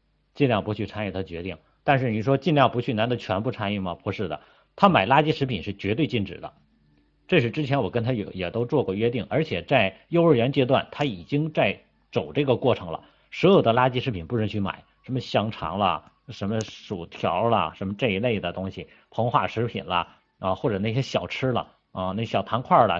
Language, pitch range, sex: Chinese, 95-135 Hz, male